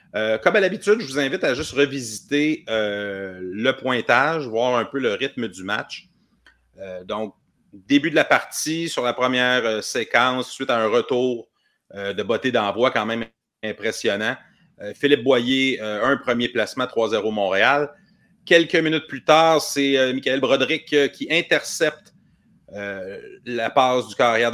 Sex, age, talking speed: male, 30-49, 165 wpm